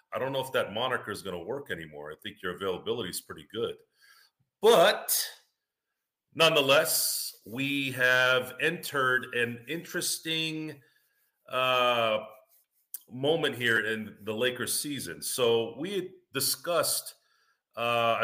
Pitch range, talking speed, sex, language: 115-160 Hz, 120 wpm, male, English